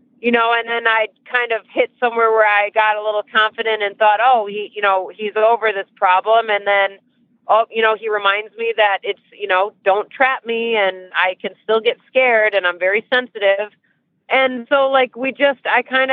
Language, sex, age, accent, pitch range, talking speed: English, female, 30-49, American, 200-235 Hz, 210 wpm